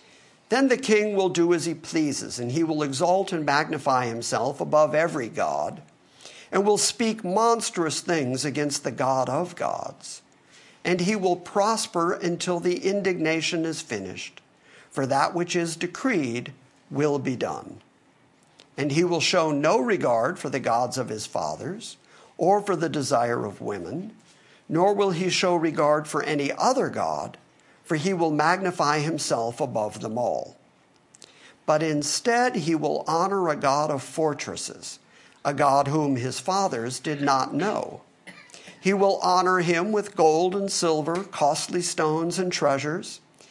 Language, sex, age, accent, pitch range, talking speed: English, male, 50-69, American, 145-185 Hz, 150 wpm